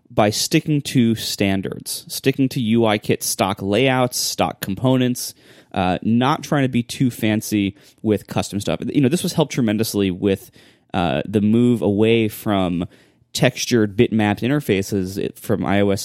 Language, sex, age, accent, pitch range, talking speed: English, male, 20-39, American, 100-135 Hz, 145 wpm